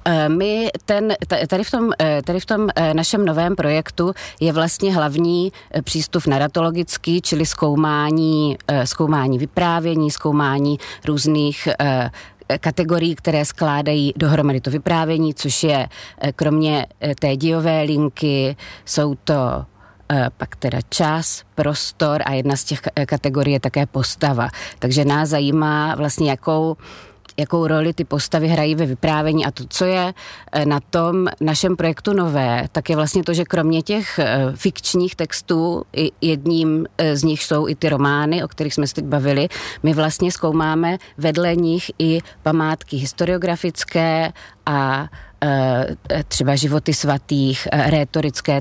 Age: 30-49